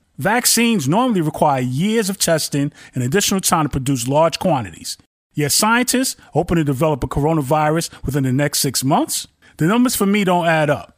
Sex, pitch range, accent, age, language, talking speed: male, 145-200 Hz, American, 30-49, English, 175 wpm